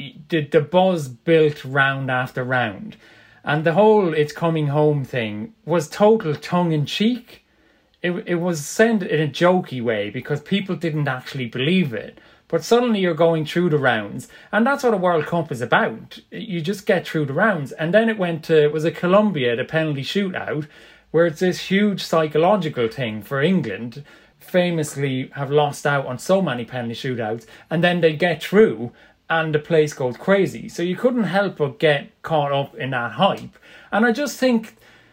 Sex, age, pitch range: male, 30-49, 135-185 Hz